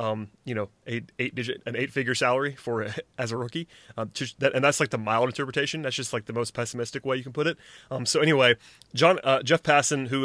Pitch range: 115-135 Hz